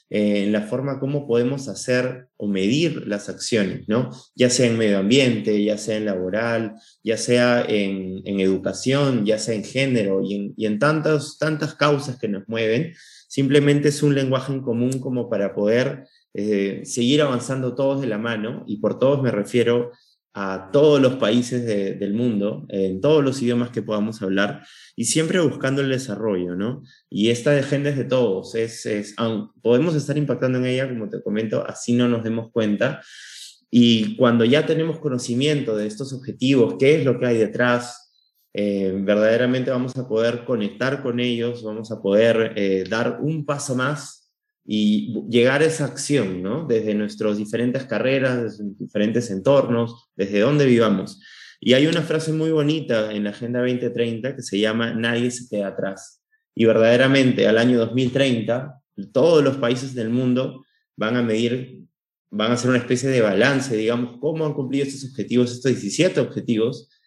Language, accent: Spanish, Argentinian